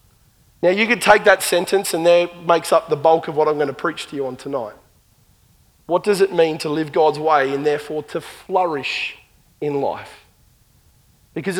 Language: English